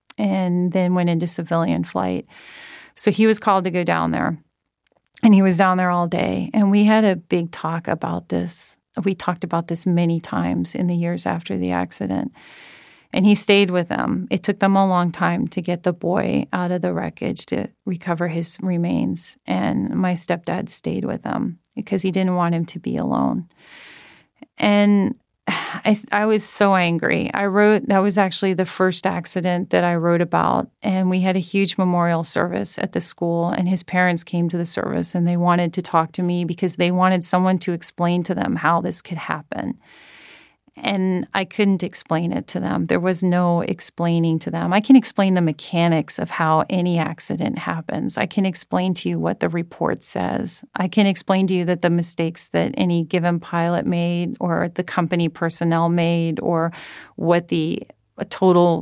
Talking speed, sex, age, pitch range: 190 wpm, female, 30-49, 170-190 Hz